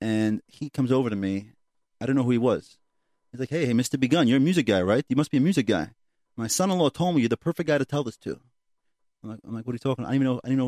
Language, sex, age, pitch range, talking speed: English, male, 30-49, 115-135 Hz, 310 wpm